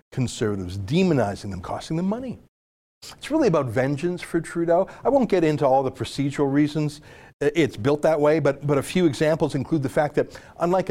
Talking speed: 185 wpm